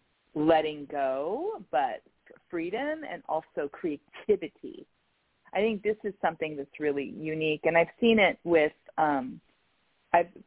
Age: 40-59